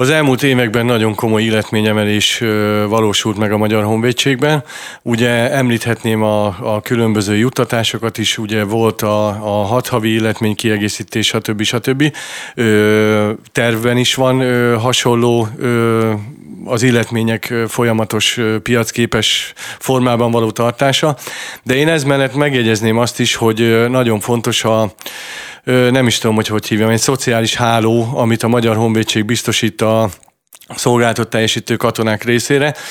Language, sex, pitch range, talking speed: Hungarian, male, 110-125 Hz, 125 wpm